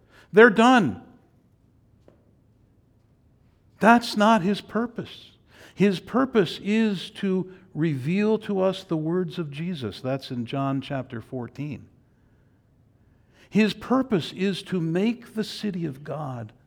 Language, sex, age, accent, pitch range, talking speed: English, male, 60-79, American, 115-170 Hz, 110 wpm